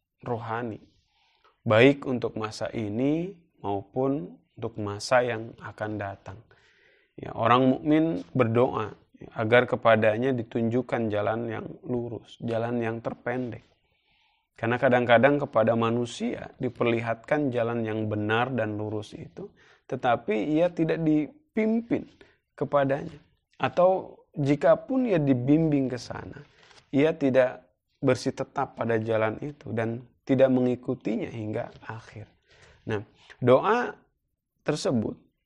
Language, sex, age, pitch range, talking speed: Indonesian, male, 20-39, 115-145 Hz, 105 wpm